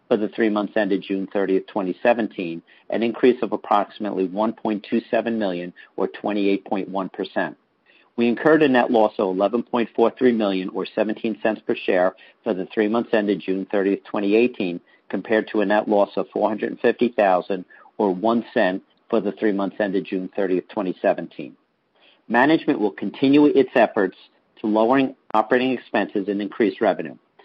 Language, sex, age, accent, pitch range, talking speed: English, male, 50-69, American, 100-120 Hz, 140 wpm